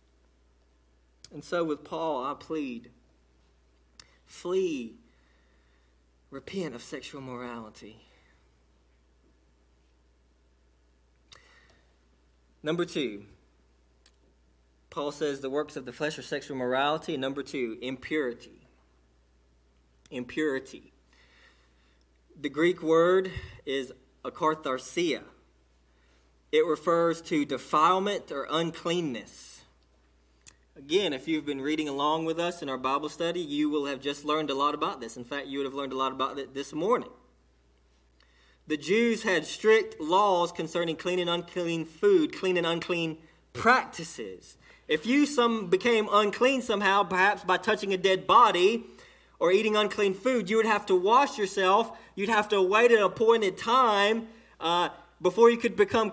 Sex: male